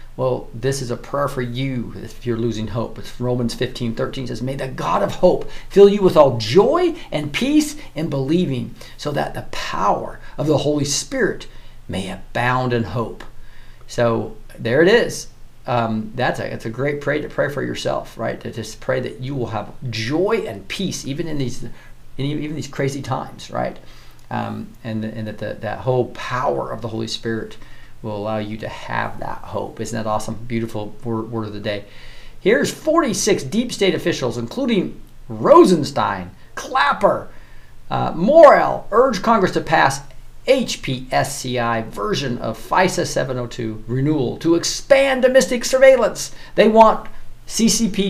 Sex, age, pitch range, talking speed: male, 40-59, 115-170 Hz, 165 wpm